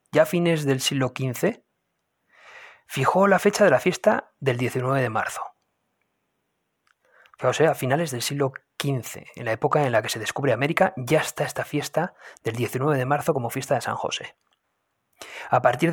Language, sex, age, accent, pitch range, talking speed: Spanish, male, 30-49, Spanish, 130-170 Hz, 175 wpm